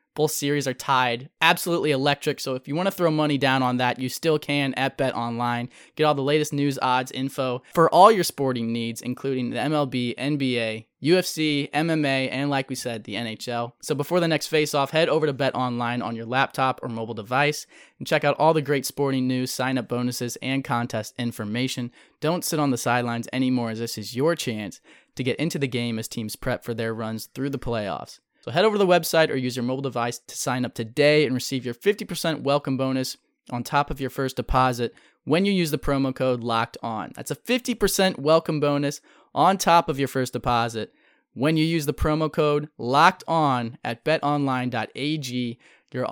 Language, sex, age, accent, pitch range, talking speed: English, male, 20-39, American, 125-155 Hz, 205 wpm